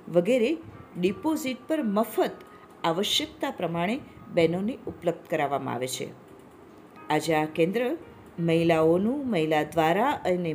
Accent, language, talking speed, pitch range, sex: native, Hindi, 90 wpm, 175-250 Hz, female